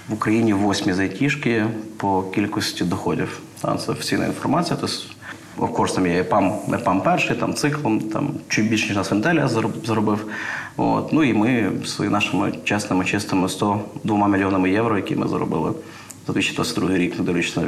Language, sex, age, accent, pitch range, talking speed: Ukrainian, male, 30-49, native, 100-120 Hz, 155 wpm